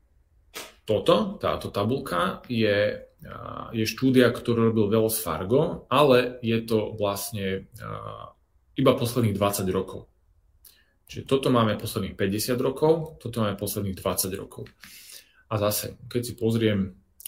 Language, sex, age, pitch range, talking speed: Czech, male, 30-49, 95-120 Hz, 120 wpm